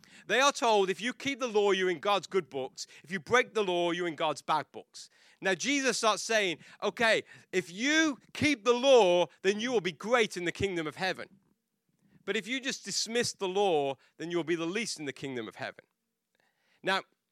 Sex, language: male, English